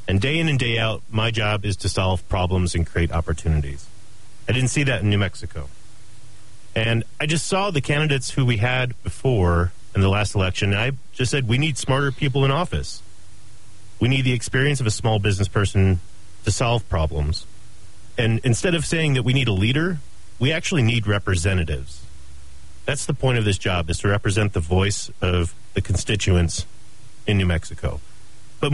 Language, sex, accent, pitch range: English, male, American, 100-120 Hz